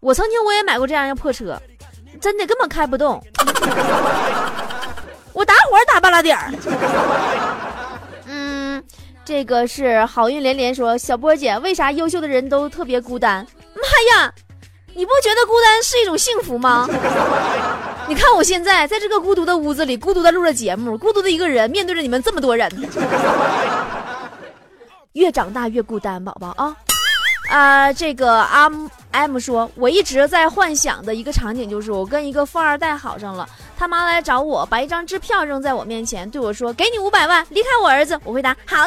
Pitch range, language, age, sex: 235-360 Hz, Chinese, 20-39, female